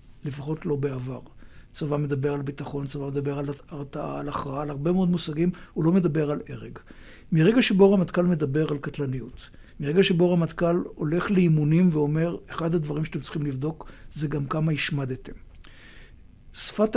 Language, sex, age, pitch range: Hebrew, male, 60-79, 145-175 Hz